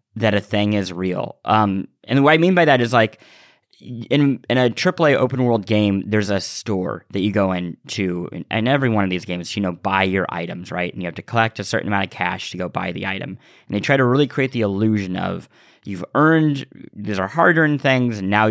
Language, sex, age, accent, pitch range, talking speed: English, male, 30-49, American, 100-130 Hz, 230 wpm